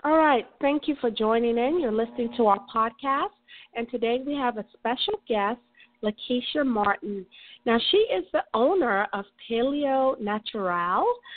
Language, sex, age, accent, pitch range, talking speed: English, female, 40-59, American, 225-280 Hz, 155 wpm